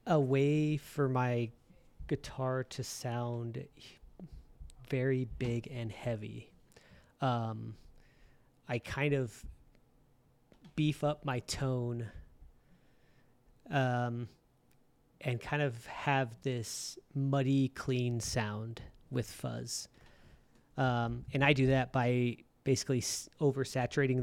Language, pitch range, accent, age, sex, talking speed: English, 120-135 Hz, American, 30-49, male, 95 wpm